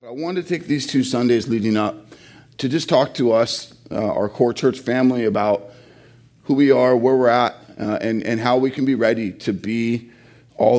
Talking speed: 205 wpm